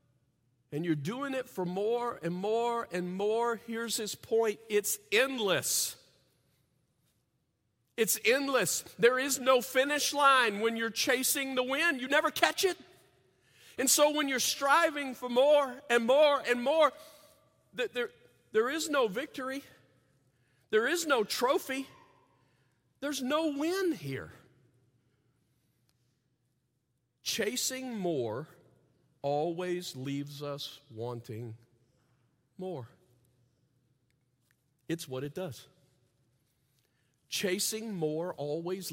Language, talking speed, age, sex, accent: English, 105 wpm, 40-59, male, American